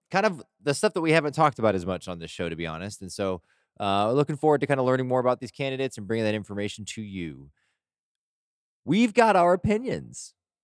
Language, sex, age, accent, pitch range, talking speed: English, male, 20-39, American, 85-115 Hz, 225 wpm